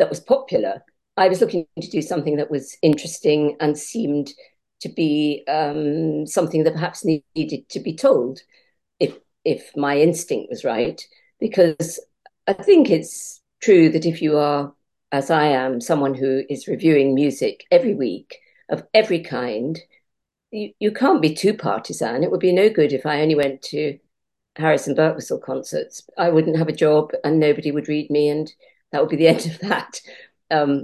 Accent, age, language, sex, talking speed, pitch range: British, 50-69, English, female, 175 wpm, 145-220 Hz